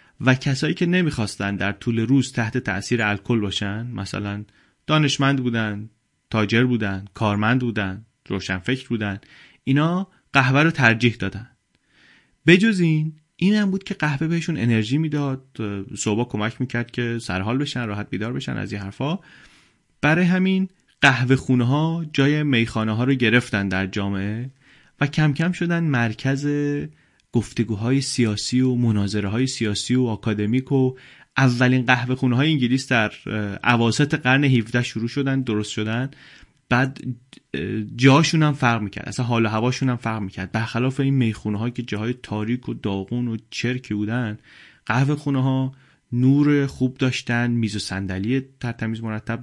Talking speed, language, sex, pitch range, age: 145 wpm, Persian, male, 110-135 Hz, 30-49